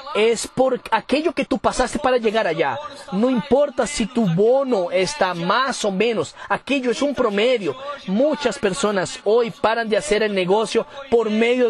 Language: Portuguese